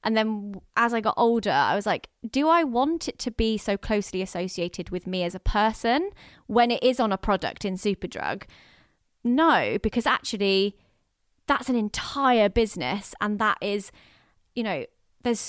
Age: 20-39